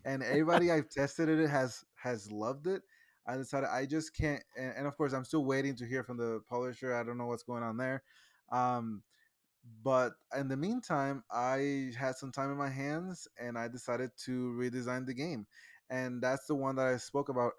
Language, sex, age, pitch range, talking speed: English, male, 20-39, 120-145 Hz, 200 wpm